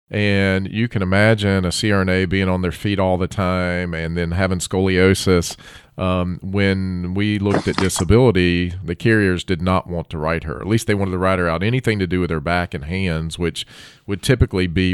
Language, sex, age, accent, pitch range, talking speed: English, male, 40-59, American, 90-105 Hz, 205 wpm